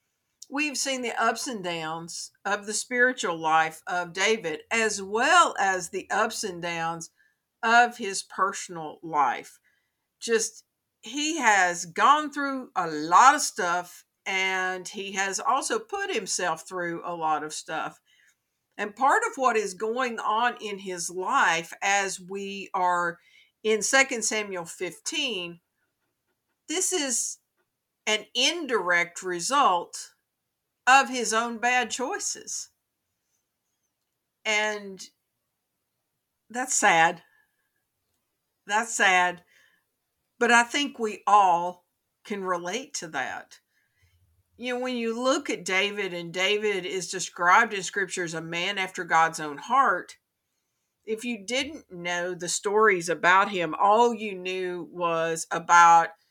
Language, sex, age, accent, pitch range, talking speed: English, female, 50-69, American, 175-235 Hz, 125 wpm